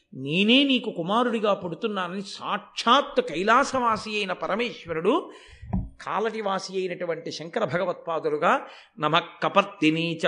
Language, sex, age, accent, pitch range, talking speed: Telugu, male, 50-69, native, 190-255 Hz, 80 wpm